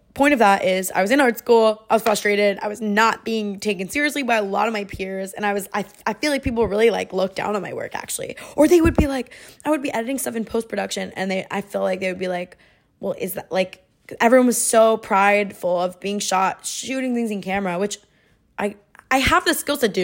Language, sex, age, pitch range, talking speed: English, female, 20-39, 185-230 Hz, 255 wpm